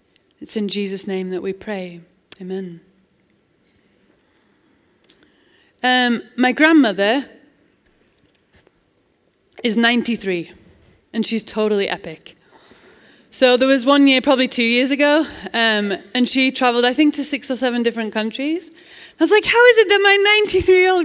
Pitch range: 210-280 Hz